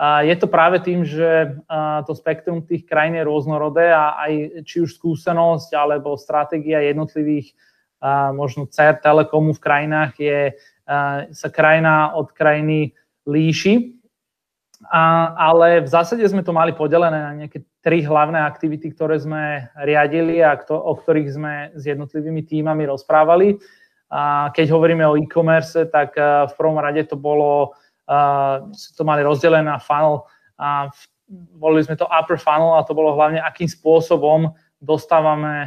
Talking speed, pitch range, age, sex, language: 140 wpm, 145-160 Hz, 20-39, male, Slovak